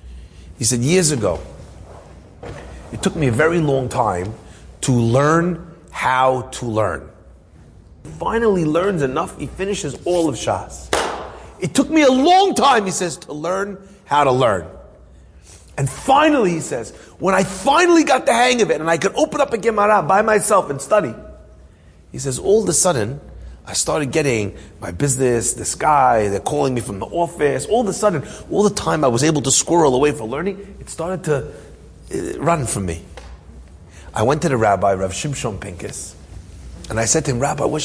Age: 40-59